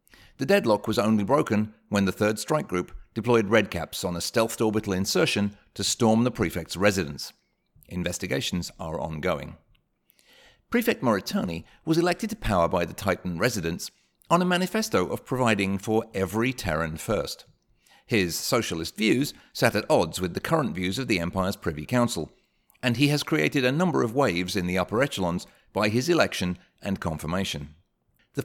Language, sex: English, male